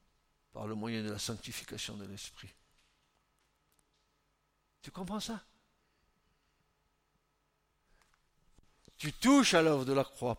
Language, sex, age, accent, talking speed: French, male, 60-79, French, 105 wpm